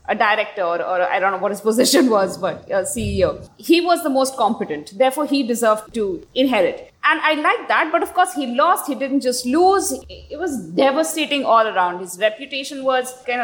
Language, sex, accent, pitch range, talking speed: English, female, Indian, 245-320 Hz, 205 wpm